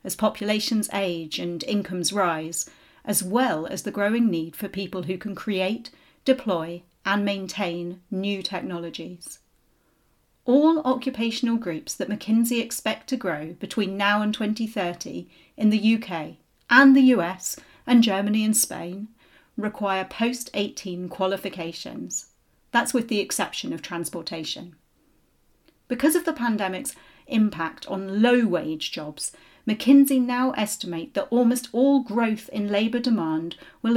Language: English